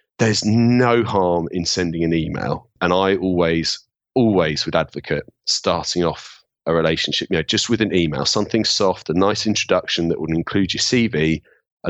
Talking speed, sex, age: 170 wpm, male, 30-49